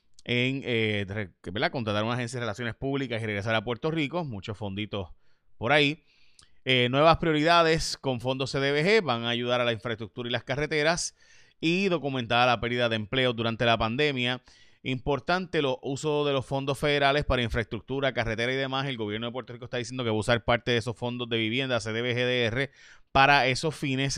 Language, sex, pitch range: Spanish, male, 115-140 Hz